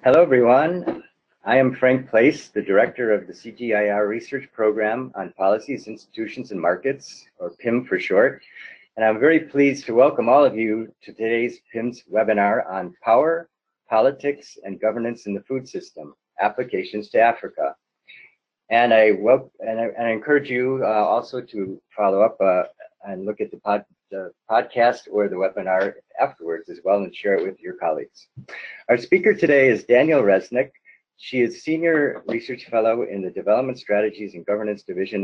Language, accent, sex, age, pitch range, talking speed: English, American, male, 50-69, 105-140 Hz, 165 wpm